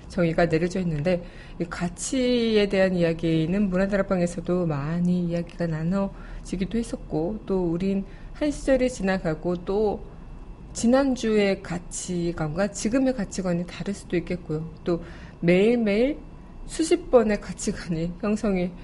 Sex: female